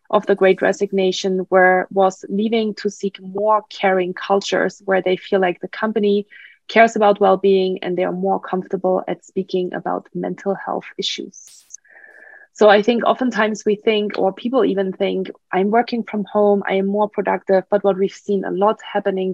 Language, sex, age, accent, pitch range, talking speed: English, female, 20-39, German, 190-215 Hz, 175 wpm